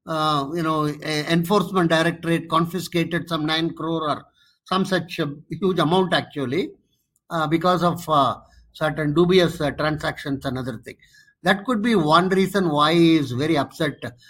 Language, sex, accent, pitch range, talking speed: English, male, Indian, 140-180 Hz, 160 wpm